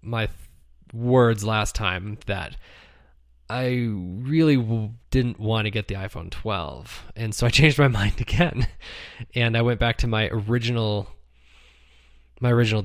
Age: 20-39